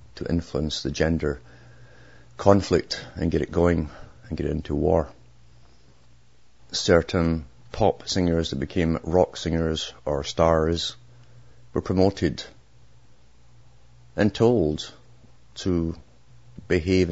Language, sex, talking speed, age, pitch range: English, male, 100 wpm, 50-69, 75-100 Hz